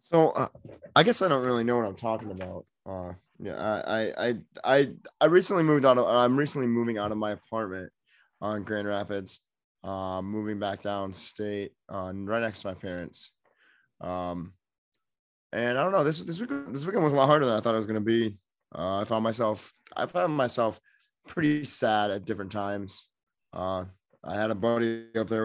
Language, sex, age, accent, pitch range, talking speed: English, male, 20-39, American, 95-115 Hz, 200 wpm